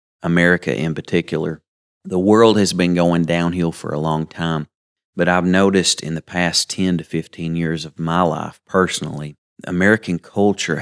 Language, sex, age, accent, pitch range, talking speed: English, male, 30-49, American, 80-95 Hz, 160 wpm